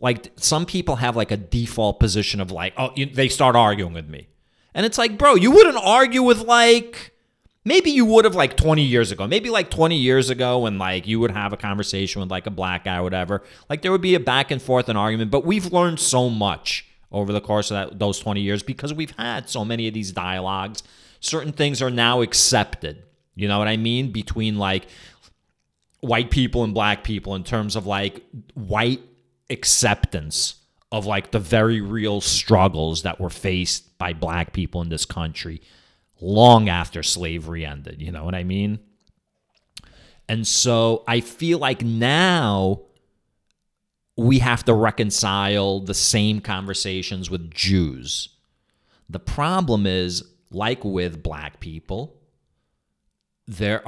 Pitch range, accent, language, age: 95-120 Hz, American, English, 30-49